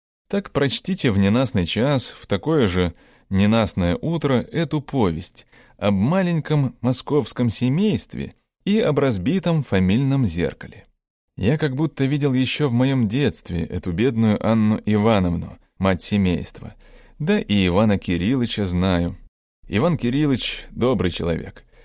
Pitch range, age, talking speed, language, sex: 95-135 Hz, 20-39, 120 wpm, Russian, male